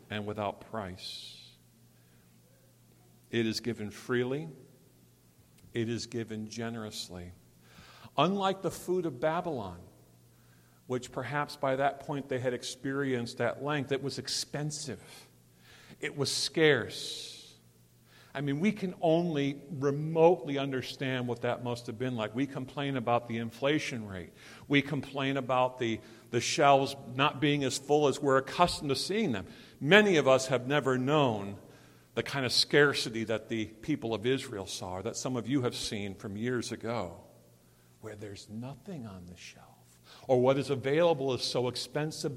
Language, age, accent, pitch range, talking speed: English, 50-69, American, 105-140 Hz, 150 wpm